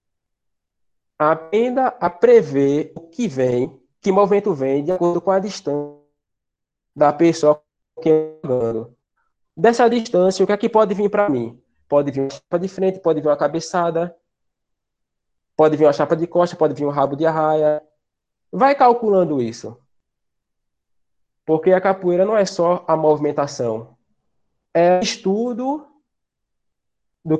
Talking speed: 145 wpm